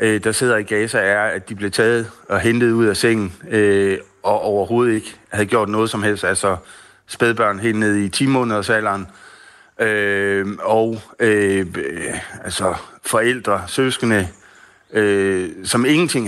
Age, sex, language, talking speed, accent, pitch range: 60-79, male, Danish, 140 wpm, native, 100-120 Hz